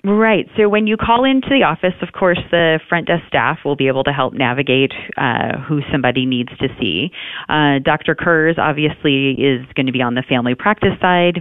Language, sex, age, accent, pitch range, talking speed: English, female, 30-49, American, 135-170 Hz, 205 wpm